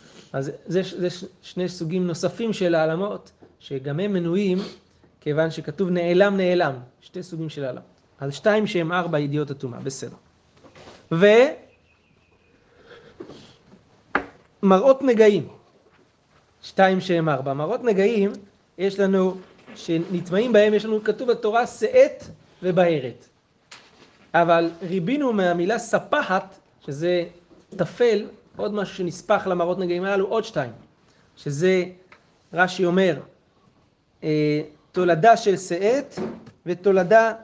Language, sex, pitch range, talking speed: Hebrew, male, 170-205 Hz, 105 wpm